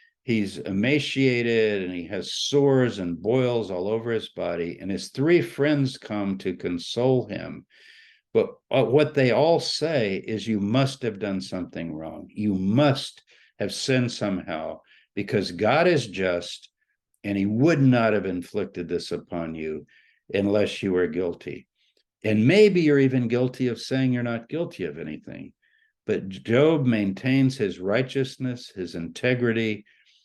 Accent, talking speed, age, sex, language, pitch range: American, 145 wpm, 60-79, male, English, 95-130 Hz